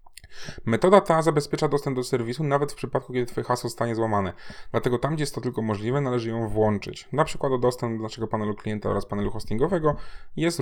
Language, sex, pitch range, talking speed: Polish, male, 105-130 Hz, 205 wpm